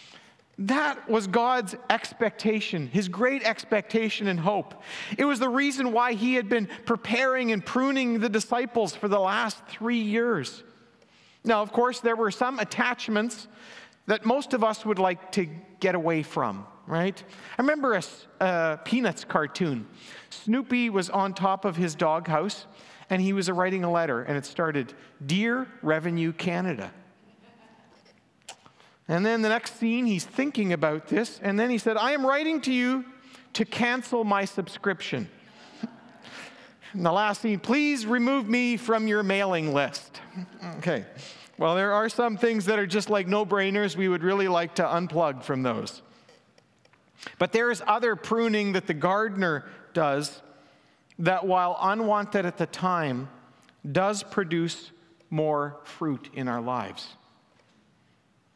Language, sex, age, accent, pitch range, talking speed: English, male, 50-69, American, 175-230 Hz, 145 wpm